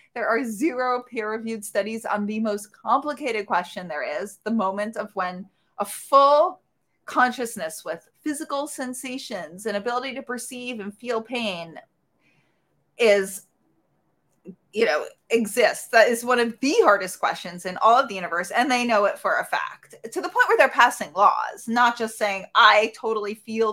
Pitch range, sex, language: 205-260 Hz, female, English